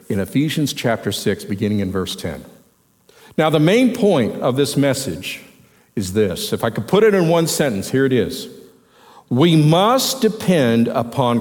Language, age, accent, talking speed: English, 50-69, American, 170 wpm